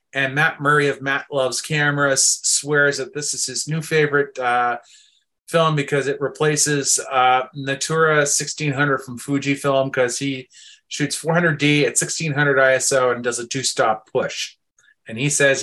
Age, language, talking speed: 30-49, English, 150 wpm